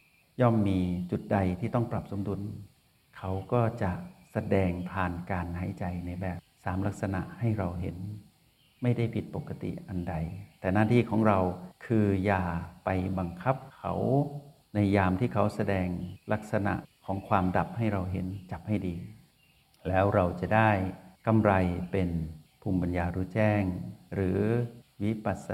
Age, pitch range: 60-79, 95-115 Hz